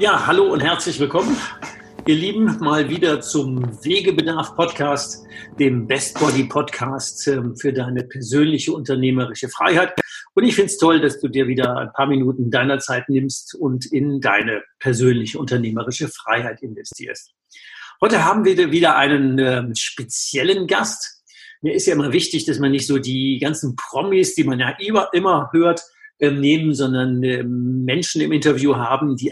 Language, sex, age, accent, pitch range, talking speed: German, male, 50-69, German, 130-170 Hz, 145 wpm